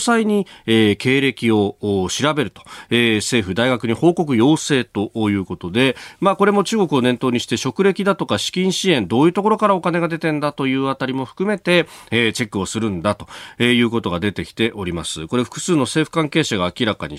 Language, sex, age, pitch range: Japanese, male, 40-59, 105-150 Hz